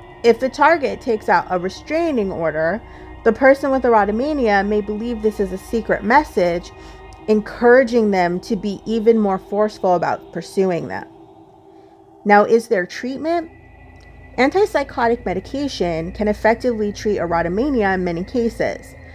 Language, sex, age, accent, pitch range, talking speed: English, female, 30-49, American, 185-245 Hz, 130 wpm